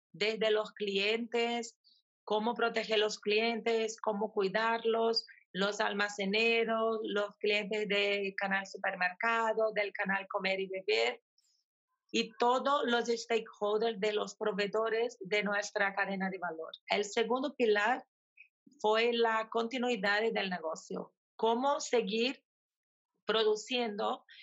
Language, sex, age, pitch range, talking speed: Spanish, female, 40-59, 205-230 Hz, 110 wpm